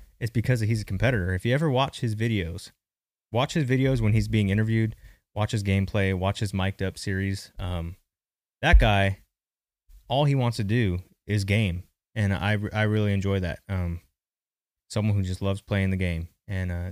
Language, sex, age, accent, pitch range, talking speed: English, male, 20-39, American, 95-120 Hz, 185 wpm